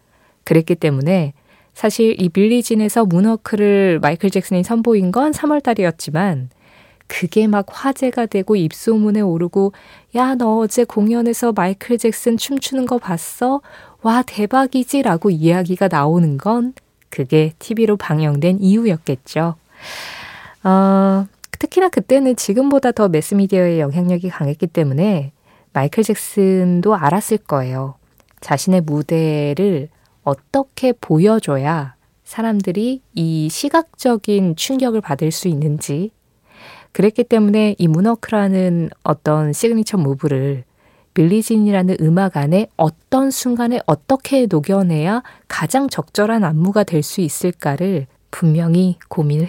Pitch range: 160-225 Hz